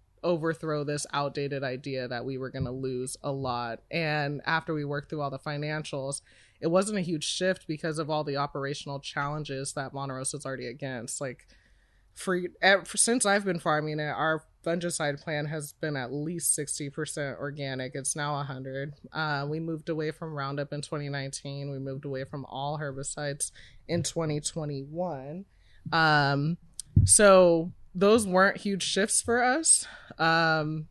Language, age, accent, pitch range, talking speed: English, 20-39, American, 140-165 Hz, 160 wpm